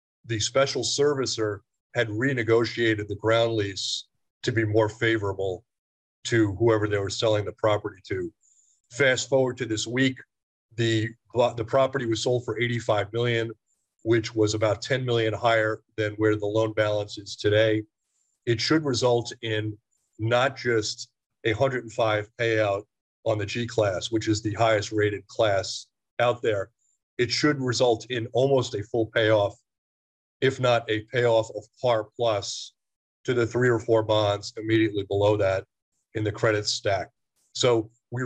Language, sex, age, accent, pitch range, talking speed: English, male, 40-59, American, 105-120 Hz, 150 wpm